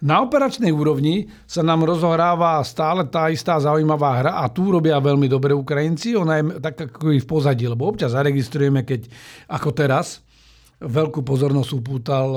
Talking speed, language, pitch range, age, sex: 160 wpm, Slovak, 140-165 Hz, 50-69, male